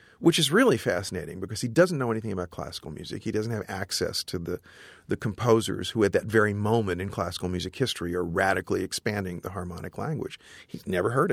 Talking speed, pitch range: 200 wpm, 95-120 Hz